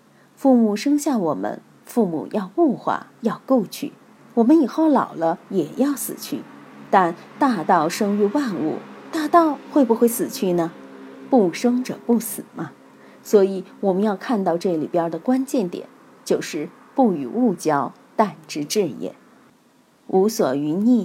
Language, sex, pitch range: Chinese, female, 175-255 Hz